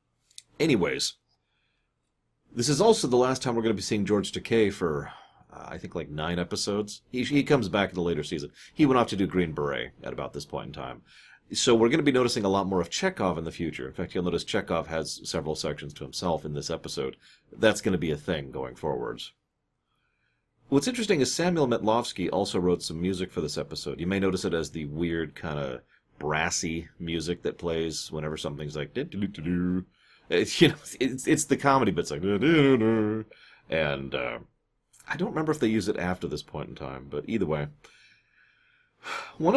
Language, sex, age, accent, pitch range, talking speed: English, male, 40-59, American, 85-120 Hz, 200 wpm